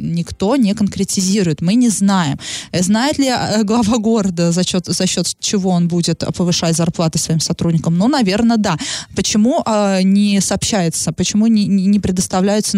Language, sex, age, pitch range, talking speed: Russian, female, 20-39, 180-220 Hz, 135 wpm